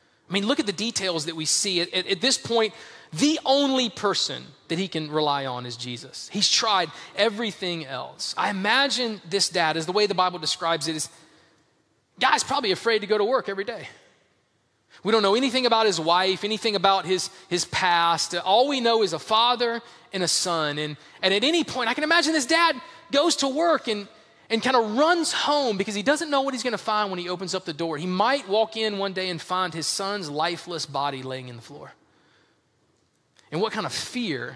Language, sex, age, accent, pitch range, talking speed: English, male, 30-49, American, 170-235 Hz, 215 wpm